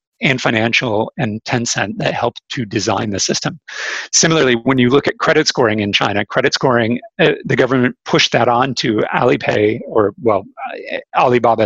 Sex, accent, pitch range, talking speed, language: male, American, 115-140 Hz, 165 wpm, English